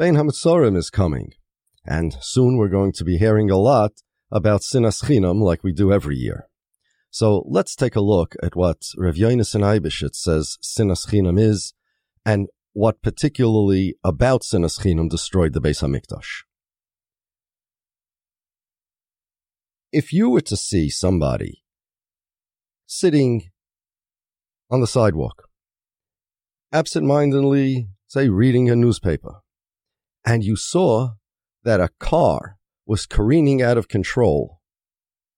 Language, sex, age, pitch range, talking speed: English, male, 40-59, 85-120 Hz, 120 wpm